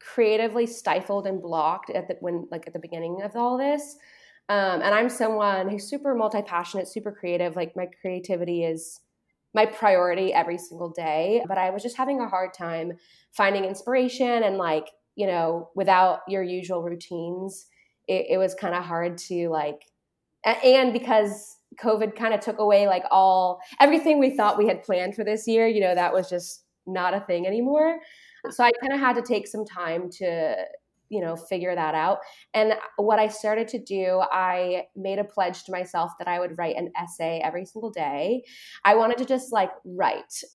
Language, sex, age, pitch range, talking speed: English, female, 20-39, 180-240 Hz, 190 wpm